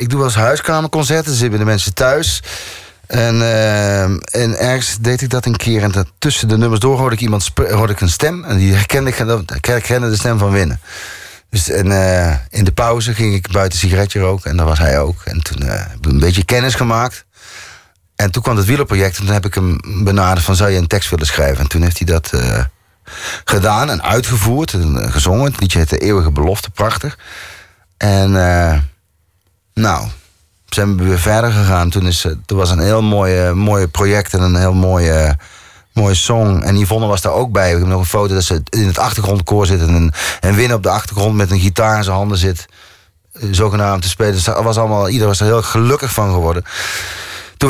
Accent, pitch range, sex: Dutch, 90-110 Hz, male